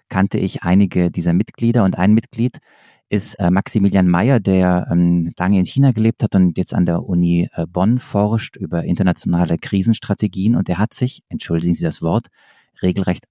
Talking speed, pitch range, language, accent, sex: 175 wpm, 90-105 Hz, German, German, male